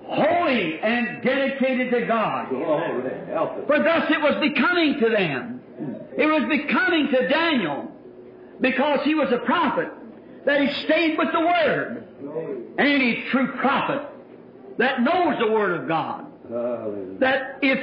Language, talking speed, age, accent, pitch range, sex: English, 130 wpm, 50-69, American, 240-285 Hz, male